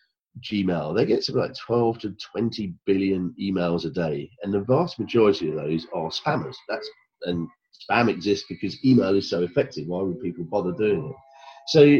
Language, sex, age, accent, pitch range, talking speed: English, male, 40-59, British, 90-130 Hz, 180 wpm